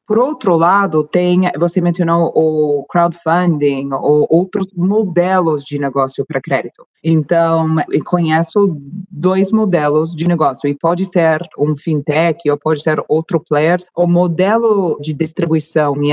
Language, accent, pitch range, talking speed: Portuguese, Brazilian, 155-195 Hz, 130 wpm